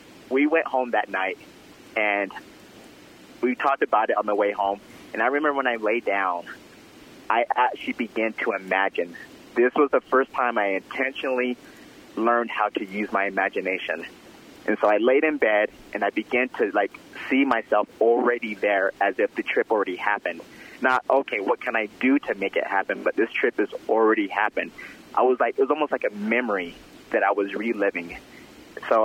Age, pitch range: 30-49, 110-135 Hz